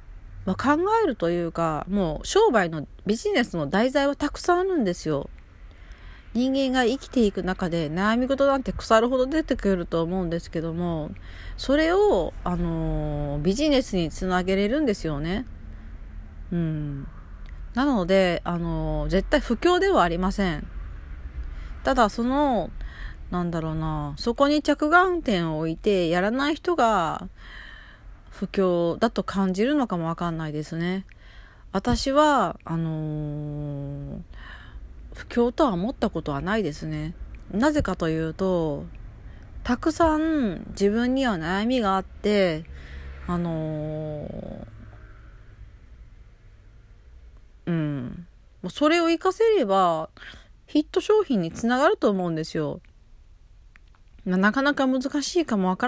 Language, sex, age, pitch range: Japanese, female, 40-59, 150-245 Hz